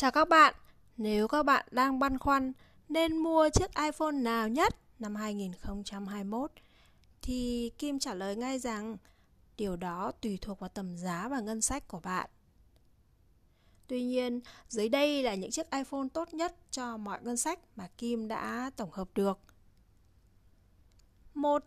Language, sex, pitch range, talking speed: Vietnamese, female, 205-285 Hz, 155 wpm